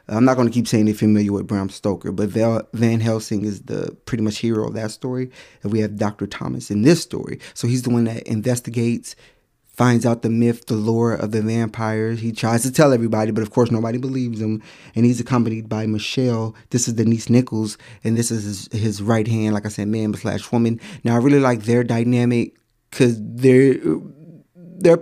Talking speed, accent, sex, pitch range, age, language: 210 wpm, American, male, 115-130 Hz, 20-39, English